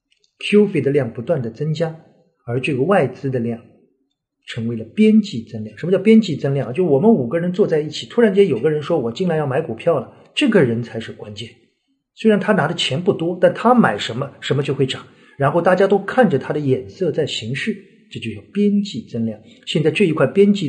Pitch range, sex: 130-200 Hz, male